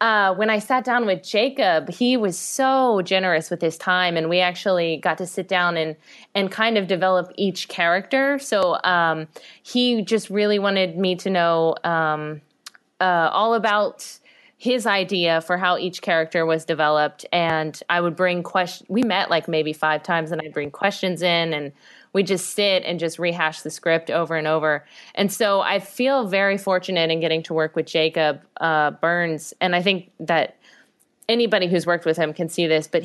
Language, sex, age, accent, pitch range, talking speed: English, female, 20-39, American, 160-195 Hz, 190 wpm